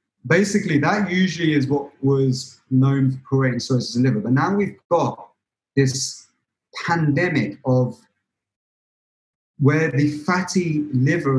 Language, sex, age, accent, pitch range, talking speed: English, male, 30-49, British, 125-155 Hz, 120 wpm